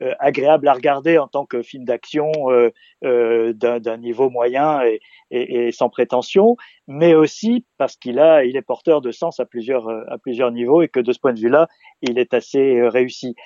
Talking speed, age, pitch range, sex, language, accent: 200 wpm, 50-69, 130-185 Hz, male, French, French